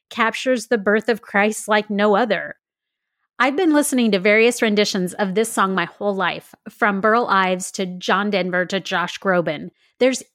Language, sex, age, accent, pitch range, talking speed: English, female, 30-49, American, 190-230 Hz, 175 wpm